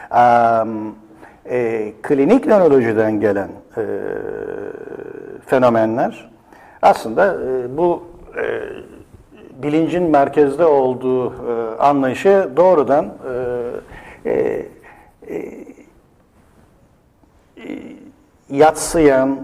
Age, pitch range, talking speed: 60-79, 120-170 Hz, 60 wpm